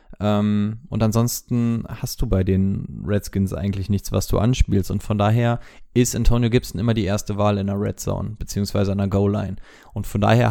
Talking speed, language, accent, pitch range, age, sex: 190 wpm, German, German, 105-125 Hz, 20-39, male